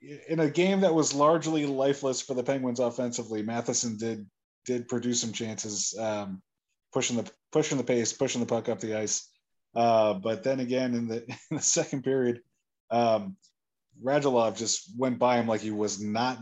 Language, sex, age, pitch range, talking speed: English, male, 20-39, 105-130 Hz, 180 wpm